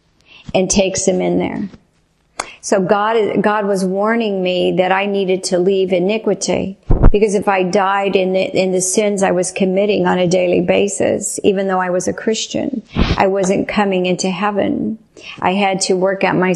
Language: English